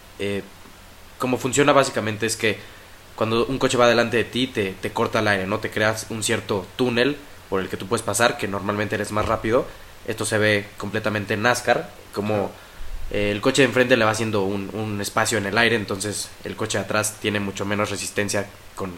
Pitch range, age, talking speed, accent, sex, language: 100-115 Hz, 20-39, 210 wpm, Mexican, male, Spanish